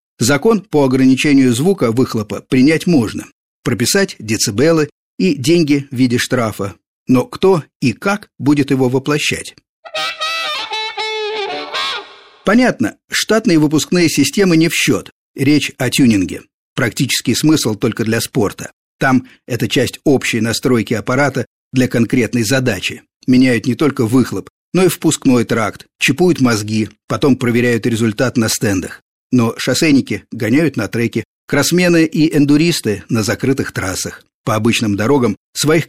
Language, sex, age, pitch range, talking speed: Russian, male, 50-69, 115-155 Hz, 125 wpm